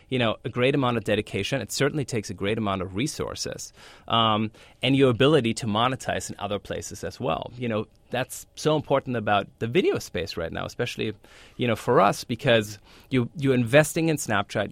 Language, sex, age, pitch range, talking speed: English, male, 30-49, 100-130 Hz, 190 wpm